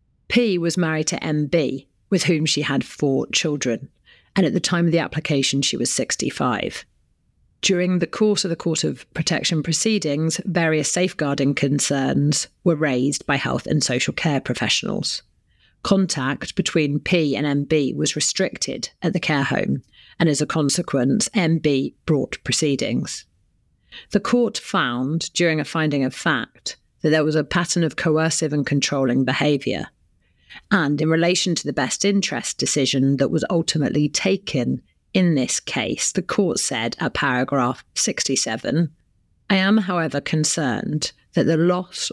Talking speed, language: 150 wpm, English